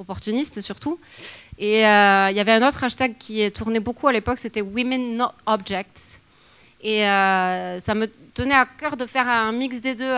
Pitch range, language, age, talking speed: 200-255 Hz, French, 30-49, 190 wpm